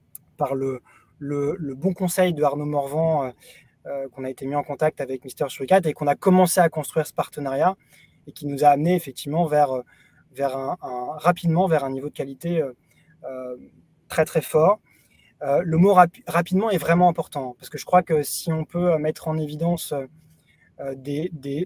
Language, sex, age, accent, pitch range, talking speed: French, male, 20-39, French, 145-175 Hz, 190 wpm